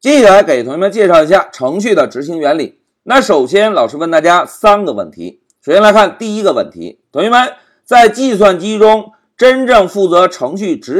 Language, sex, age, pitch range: Chinese, male, 50-69, 200-275 Hz